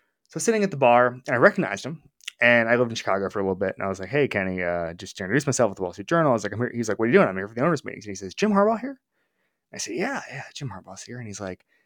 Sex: male